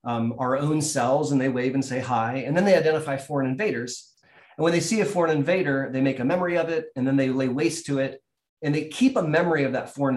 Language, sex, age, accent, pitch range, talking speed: English, male, 30-49, American, 130-155 Hz, 260 wpm